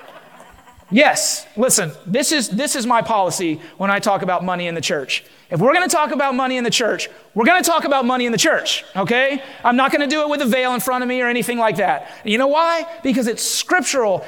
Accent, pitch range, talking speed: American, 180-255 Hz, 250 wpm